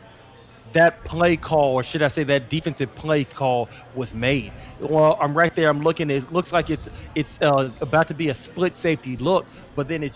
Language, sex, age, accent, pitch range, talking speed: English, male, 30-49, American, 145-185 Hz, 205 wpm